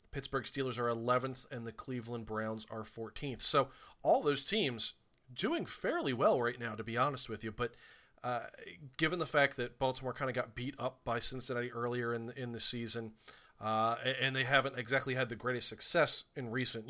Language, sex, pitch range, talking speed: English, male, 115-130 Hz, 195 wpm